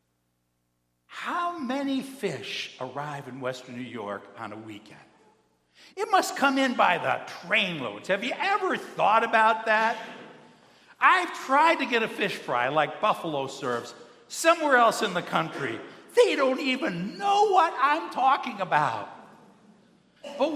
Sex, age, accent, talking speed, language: male, 60-79, American, 145 wpm, English